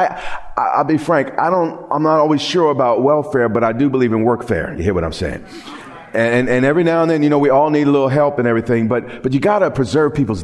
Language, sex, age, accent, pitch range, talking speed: English, male, 40-59, American, 115-145 Hz, 265 wpm